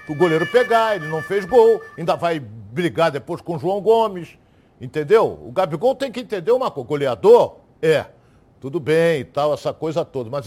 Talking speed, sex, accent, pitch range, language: 190 wpm, male, Brazilian, 155-230 Hz, Portuguese